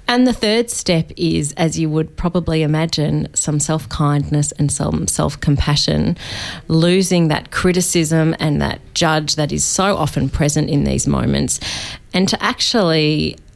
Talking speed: 140 wpm